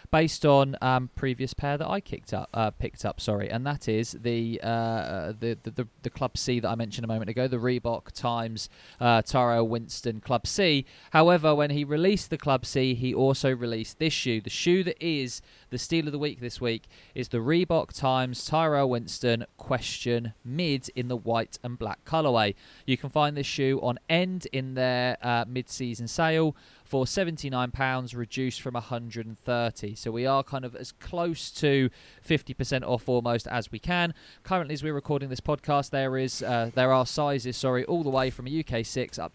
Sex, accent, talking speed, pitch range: male, British, 190 wpm, 115-140 Hz